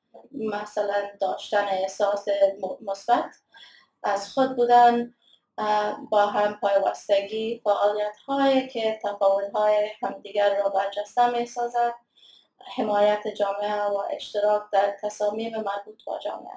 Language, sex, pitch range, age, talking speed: Persian, female, 205-235 Hz, 20-39, 100 wpm